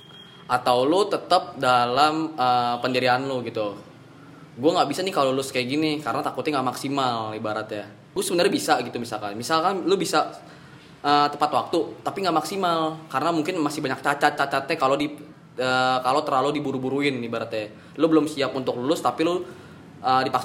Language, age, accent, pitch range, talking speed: Indonesian, 10-29, native, 120-150 Hz, 165 wpm